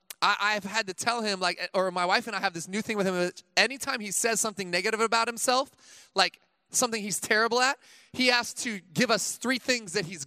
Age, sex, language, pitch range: 20-39, male, English, 180-245 Hz